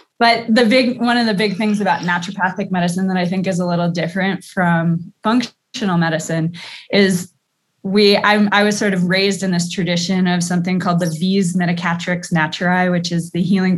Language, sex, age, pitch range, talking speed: English, female, 20-39, 170-195 Hz, 185 wpm